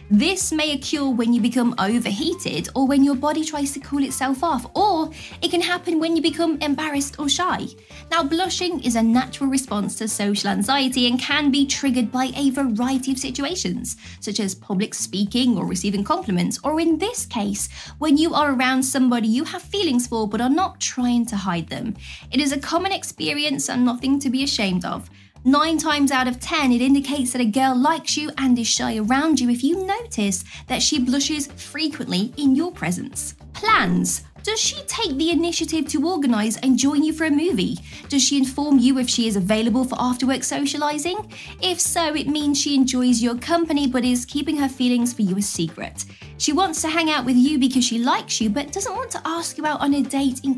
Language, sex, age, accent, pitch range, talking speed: English, female, 20-39, British, 235-305 Hz, 205 wpm